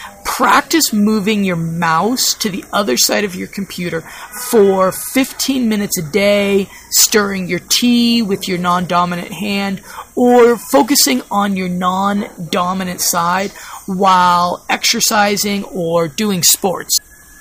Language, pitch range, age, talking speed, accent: English, 180-230 Hz, 30-49, 115 wpm, American